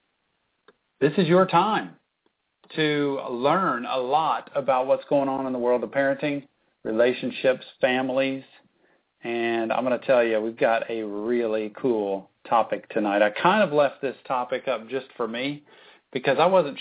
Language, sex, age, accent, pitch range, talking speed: English, male, 50-69, American, 110-130 Hz, 160 wpm